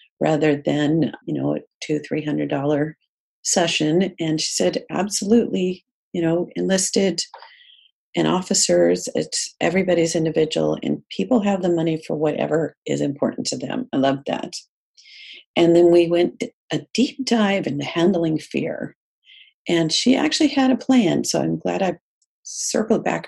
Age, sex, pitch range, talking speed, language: 40-59, female, 160-225 Hz, 145 wpm, English